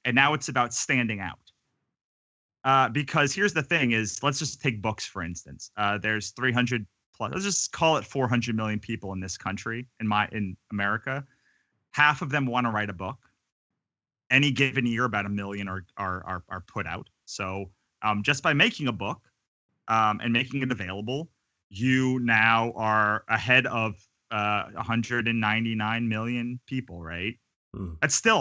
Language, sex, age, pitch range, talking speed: English, male, 30-49, 105-140 Hz, 170 wpm